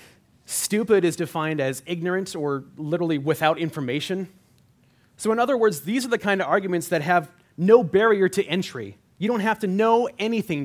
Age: 30-49